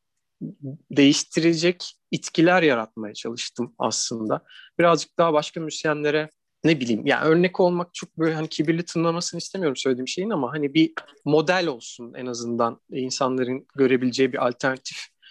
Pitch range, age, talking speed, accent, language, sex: 130-160 Hz, 40-59, 130 wpm, native, Turkish, male